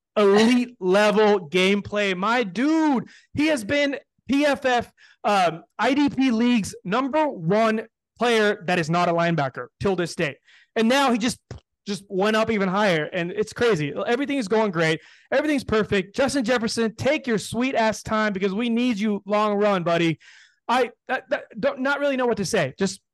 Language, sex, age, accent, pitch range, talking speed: English, male, 20-39, American, 180-240 Hz, 165 wpm